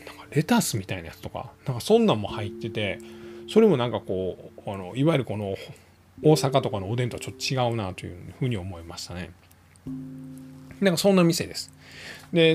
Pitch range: 110-165 Hz